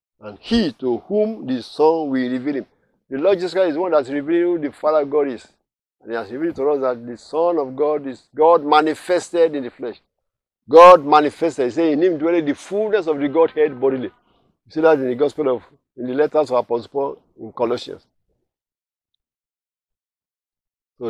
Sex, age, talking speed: male, 50-69, 195 wpm